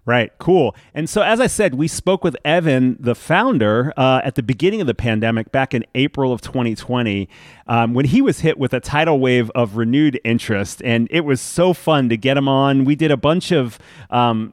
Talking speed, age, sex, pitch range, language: 215 wpm, 30-49, male, 115-150 Hz, English